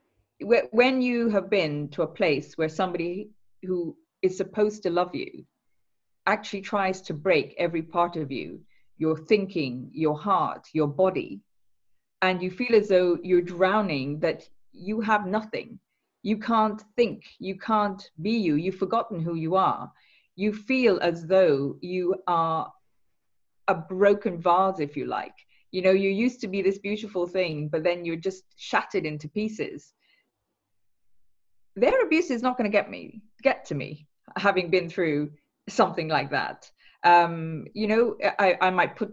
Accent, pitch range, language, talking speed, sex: British, 165-210 Hz, English, 160 wpm, female